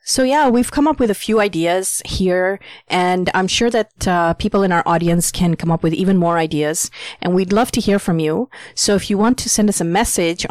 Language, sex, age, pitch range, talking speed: English, female, 30-49, 160-185 Hz, 240 wpm